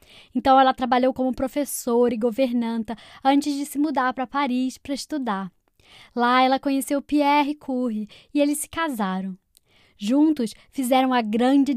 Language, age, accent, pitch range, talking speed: Portuguese, 10-29, Brazilian, 240-285 Hz, 145 wpm